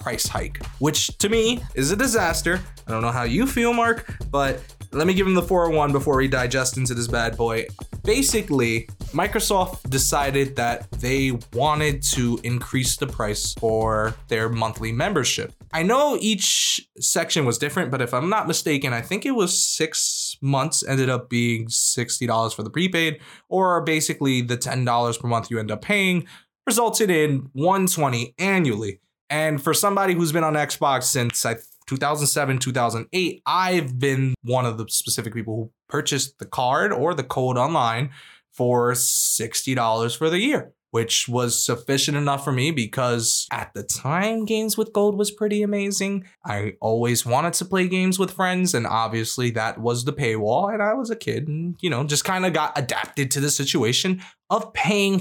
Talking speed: 175 wpm